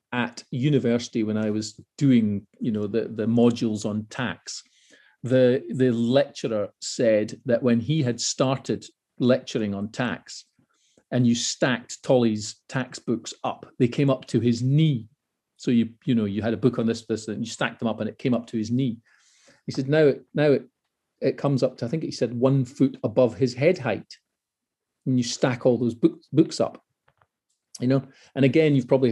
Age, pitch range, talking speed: 40-59, 115-130 Hz, 190 wpm